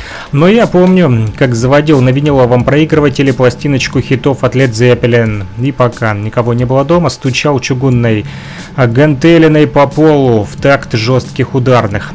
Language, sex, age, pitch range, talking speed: Russian, male, 30-49, 120-150 Hz, 140 wpm